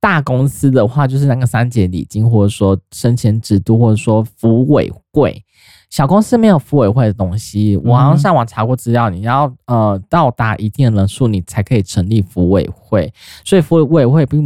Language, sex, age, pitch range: Chinese, male, 20-39, 100-135 Hz